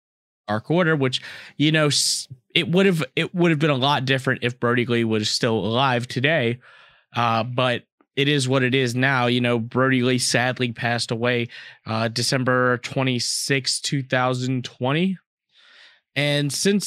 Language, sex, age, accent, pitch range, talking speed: English, male, 20-39, American, 125-150 Hz, 140 wpm